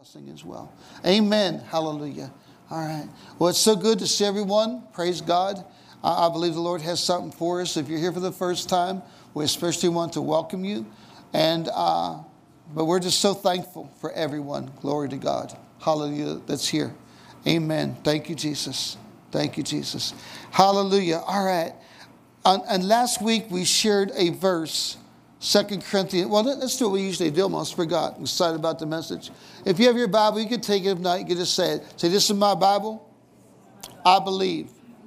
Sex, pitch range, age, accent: male, 165-205 Hz, 60-79, American